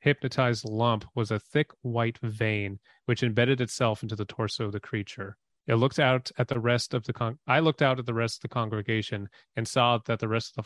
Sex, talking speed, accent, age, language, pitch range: male, 230 wpm, American, 30-49, English, 105-125 Hz